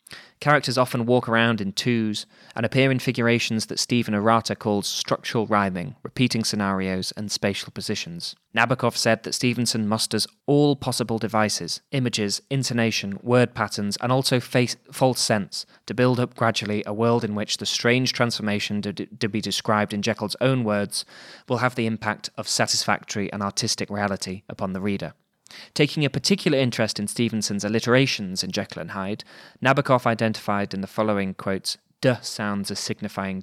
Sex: male